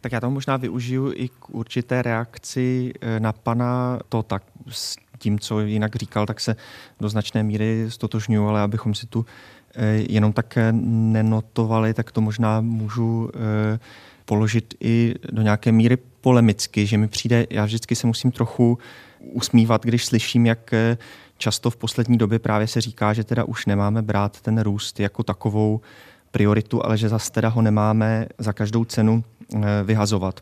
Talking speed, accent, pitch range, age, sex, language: 155 wpm, native, 105-115 Hz, 30-49, male, Czech